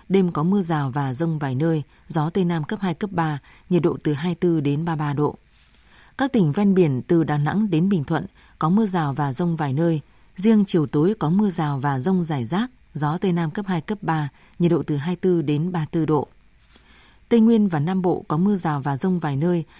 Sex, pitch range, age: female, 150-190 Hz, 20-39